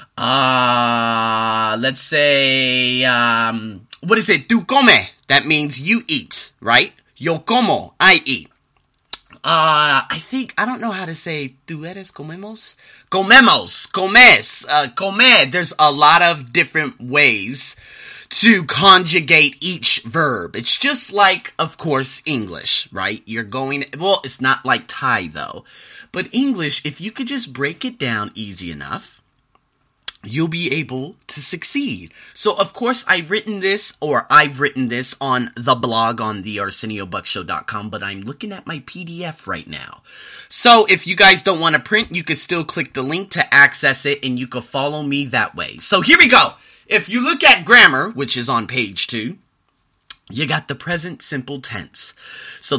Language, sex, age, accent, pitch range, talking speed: English, male, 30-49, American, 130-195 Hz, 165 wpm